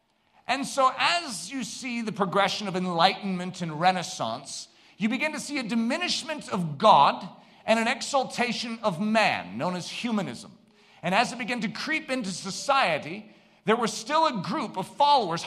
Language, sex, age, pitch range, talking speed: English, male, 40-59, 185-245 Hz, 165 wpm